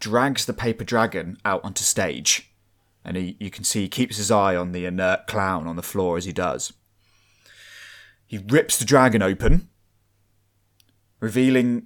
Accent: British